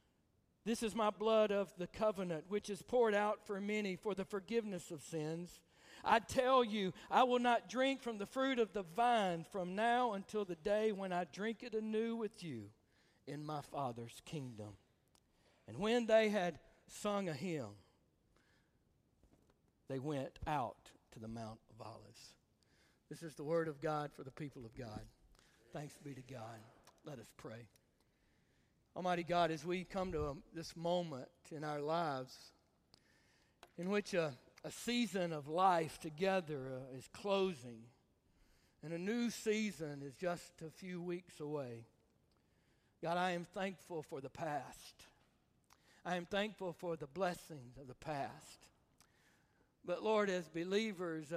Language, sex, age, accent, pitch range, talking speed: English, male, 60-79, American, 150-205 Hz, 155 wpm